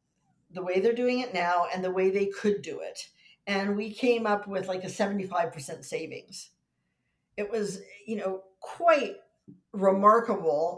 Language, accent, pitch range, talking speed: English, American, 195-240 Hz, 155 wpm